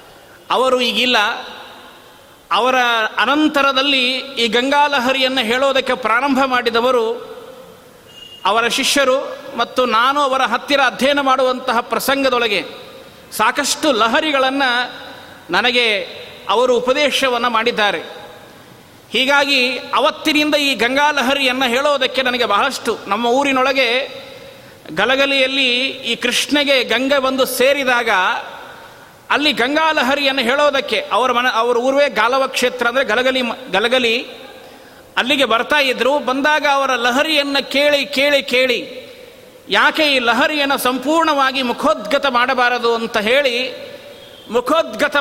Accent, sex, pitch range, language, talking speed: native, male, 250-285 Hz, Kannada, 95 wpm